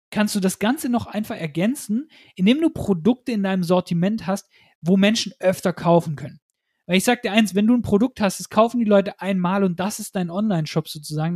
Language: German